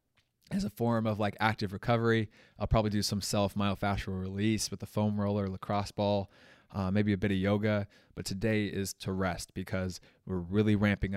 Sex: male